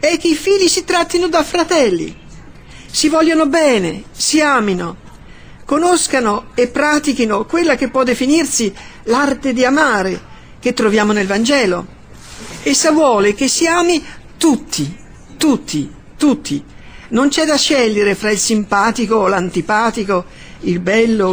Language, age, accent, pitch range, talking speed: Italian, 50-69, native, 200-285 Hz, 130 wpm